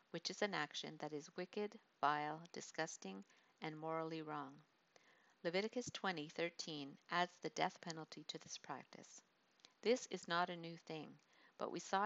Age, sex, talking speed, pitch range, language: 50-69, female, 150 wpm, 155-190 Hz, English